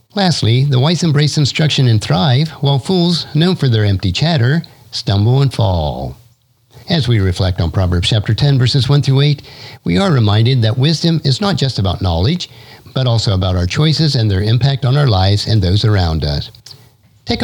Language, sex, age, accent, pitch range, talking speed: English, male, 50-69, American, 110-145 Hz, 185 wpm